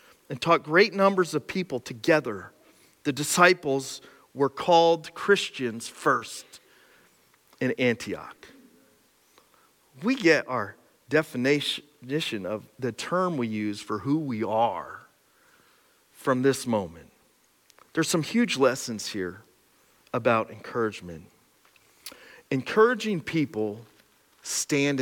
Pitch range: 115-160 Hz